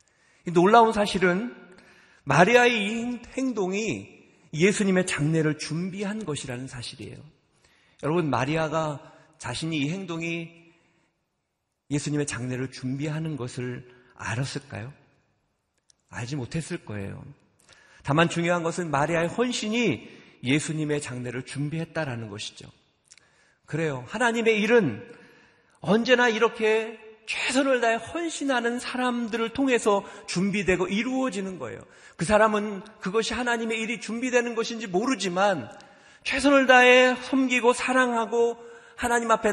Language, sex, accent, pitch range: Korean, male, native, 145-225 Hz